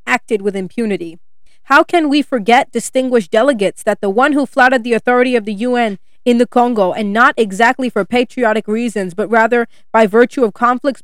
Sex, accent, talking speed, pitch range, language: female, American, 185 wpm, 210-260 Hz, English